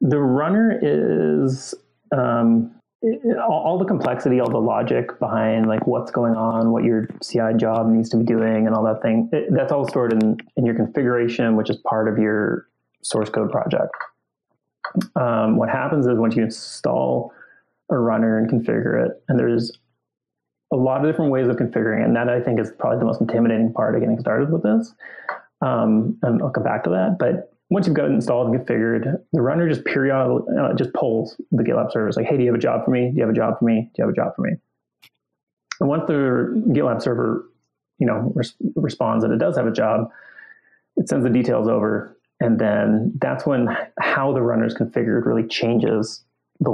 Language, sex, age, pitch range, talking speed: English, male, 30-49, 110-130 Hz, 210 wpm